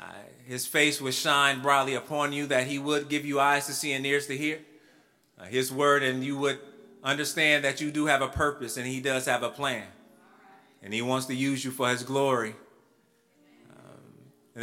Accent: American